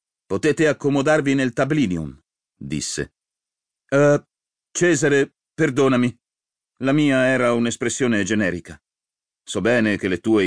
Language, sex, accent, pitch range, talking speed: Italian, male, native, 80-115 Hz, 105 wpm